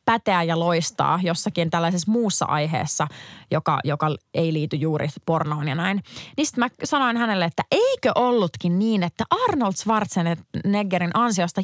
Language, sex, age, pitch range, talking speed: Finnish, female, 20-39, 160-210 Hz, 140 wpm